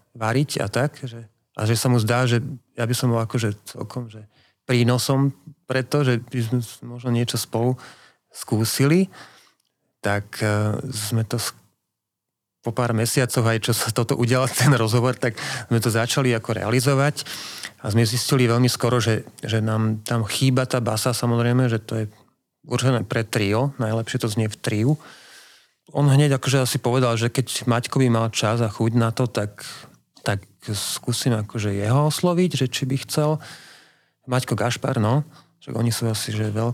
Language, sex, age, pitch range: Slovak, male, 40-59, 110-130 Hz